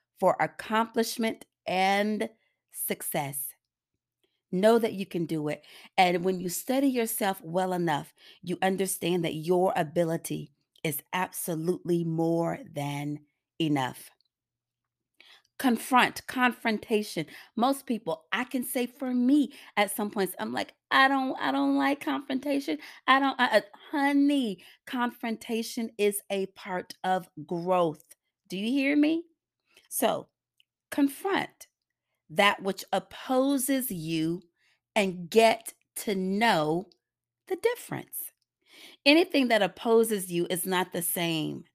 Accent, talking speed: American, 115 wpm